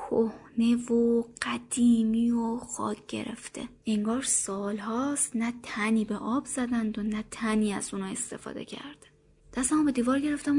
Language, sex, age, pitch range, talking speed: Persian, female, 20-39, 220-270 Hz, 140 wpm